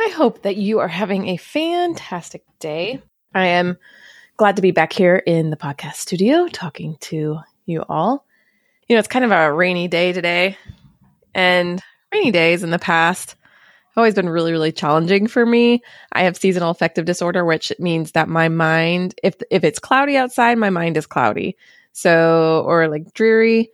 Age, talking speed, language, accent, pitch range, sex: 20-39, 175 wpm, English, American, 165-225 Hz, female